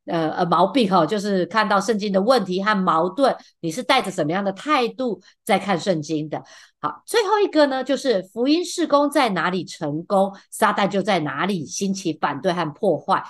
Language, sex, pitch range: Chinese, female, 165-225 Hz